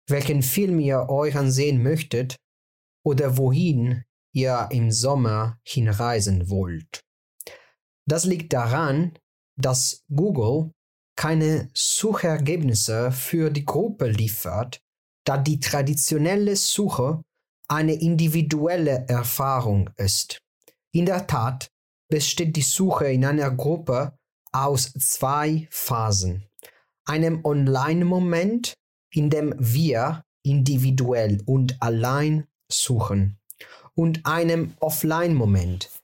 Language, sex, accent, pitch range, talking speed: German, male, German, 120-160 Hz, 95 wpm